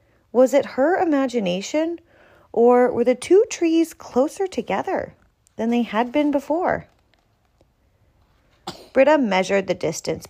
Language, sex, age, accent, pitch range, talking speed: English, female, 30-49, American, 165-255 Hz, 115 wpm